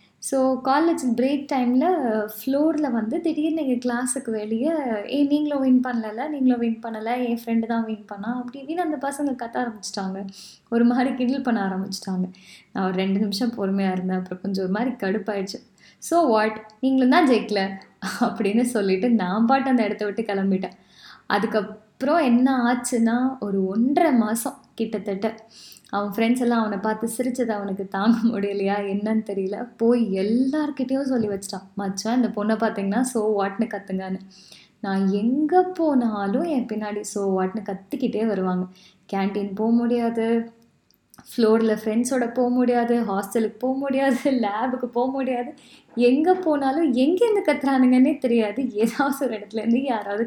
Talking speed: 140 wpm